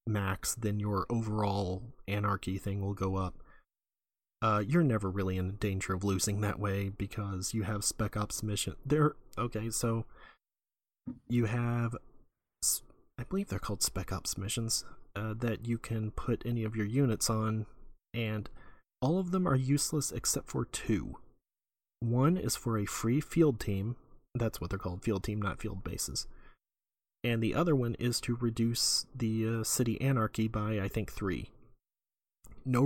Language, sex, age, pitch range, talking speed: English, male, 30-49, 100-120 Hz, 160 wpm